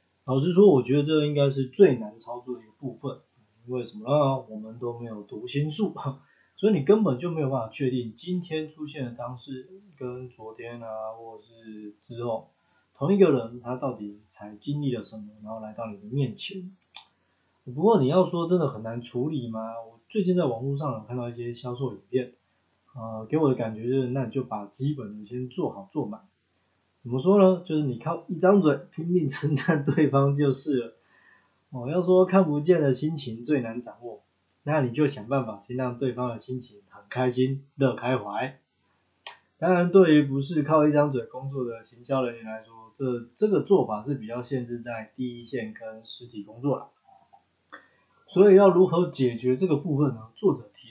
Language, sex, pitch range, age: Chinese, male, 115-150 Hz, 20-39